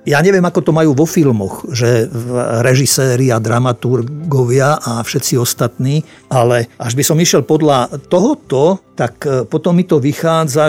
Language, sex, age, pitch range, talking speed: Slovak, male, 50-69, 125-165 Hz, 145 wpm